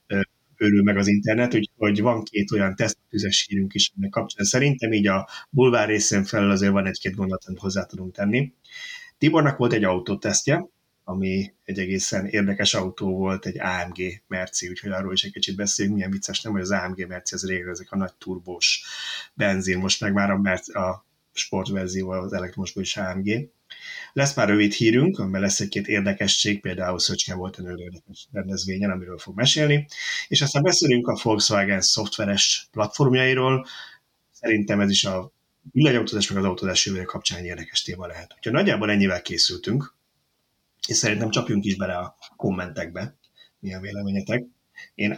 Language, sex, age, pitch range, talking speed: Hungarian, male, 30-49, 95-115 Hz, 160 wpm